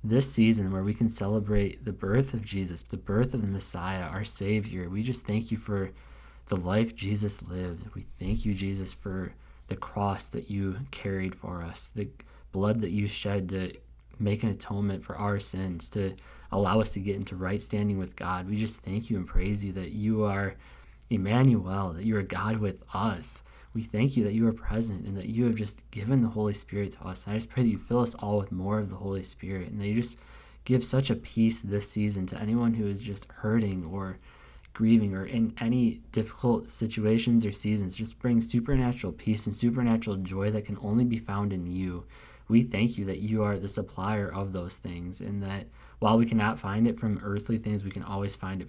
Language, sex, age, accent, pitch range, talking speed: English, male, 20-39, American, 95-110 Hz, 215 wpm